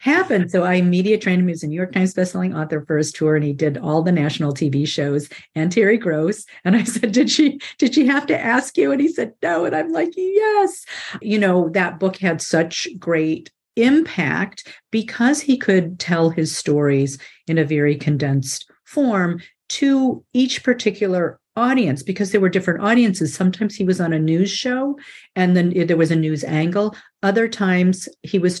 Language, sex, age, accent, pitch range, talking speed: English, female, 50-69, American, 160-210 Hz, 195 wpm